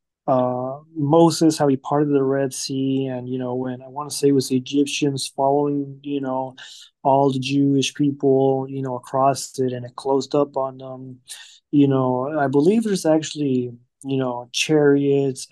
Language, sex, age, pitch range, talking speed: English, male, 20-39, 130-145 Hz, 170 wpm